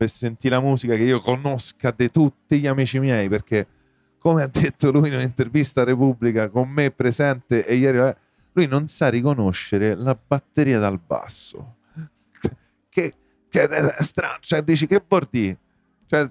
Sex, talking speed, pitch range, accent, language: male, 150 wpm, 120-170 Hz, native, Italian